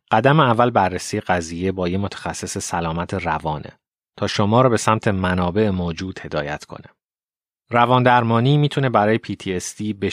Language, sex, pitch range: Persian, male, 90-115 Hz